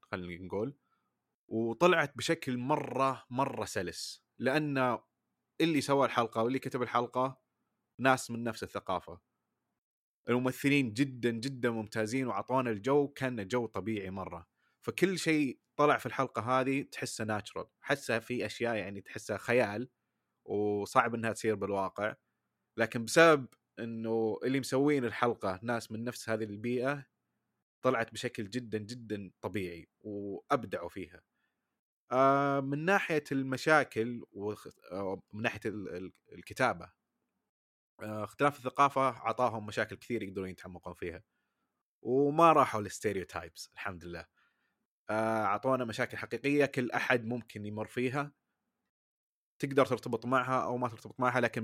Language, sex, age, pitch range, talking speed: Arabic, male, 20-39, 110-130 Hz, 115 wpm